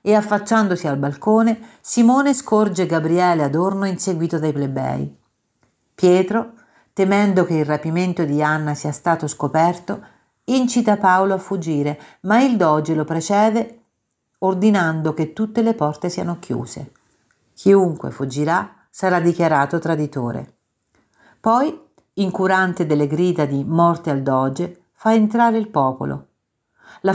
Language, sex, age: Italian, female, 50-69